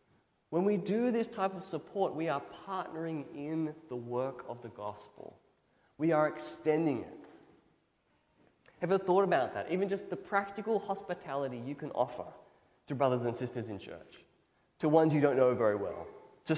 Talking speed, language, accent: 175 wpm, English, Australian